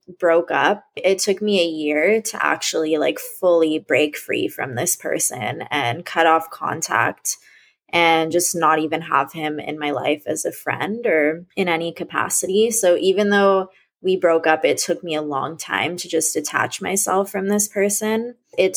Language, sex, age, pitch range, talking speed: English, female, 20-39, 155-190 Hz, 180 wpm